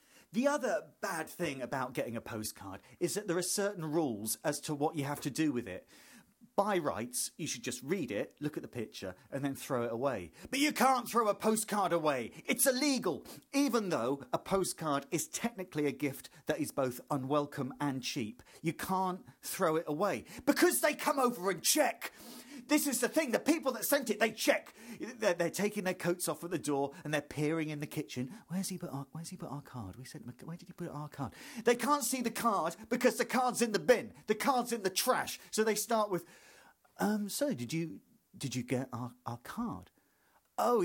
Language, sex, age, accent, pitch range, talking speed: English, male, 40-59, British, 145-235 Hz, 215 wpm